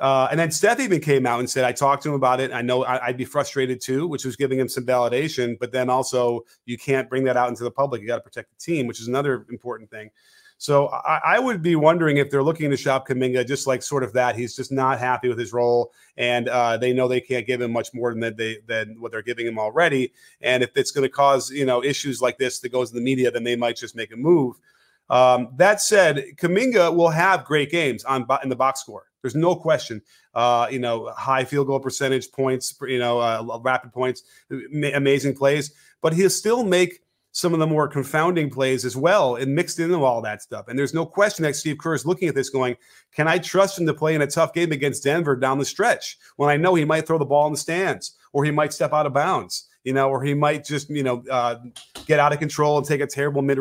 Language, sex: English, male